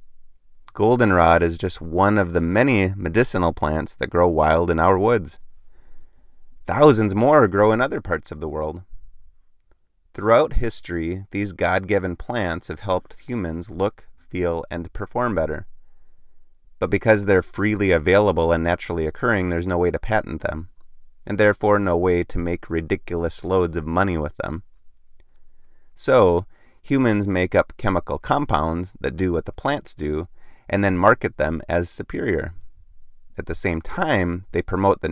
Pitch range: 80-105 Hz